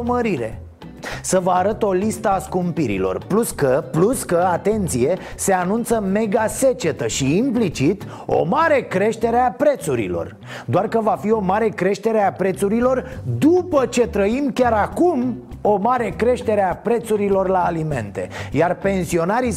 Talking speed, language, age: 140 wpm, Romanian, 30-49